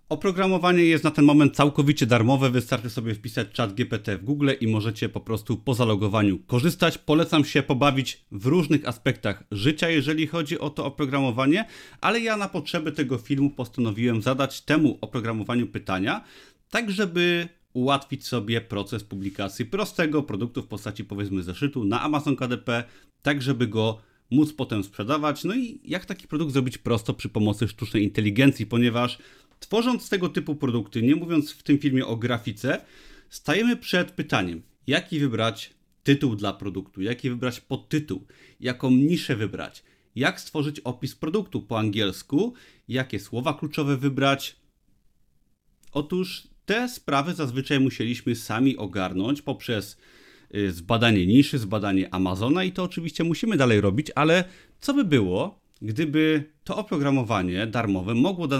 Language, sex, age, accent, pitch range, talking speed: Polish, male, 30-49, native, 115-150 Hz, 145 wpm